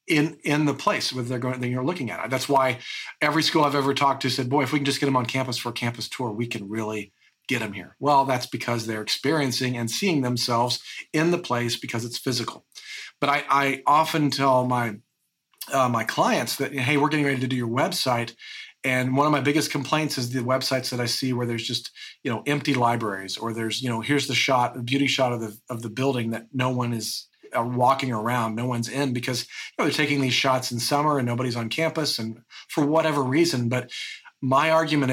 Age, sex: 40-59, male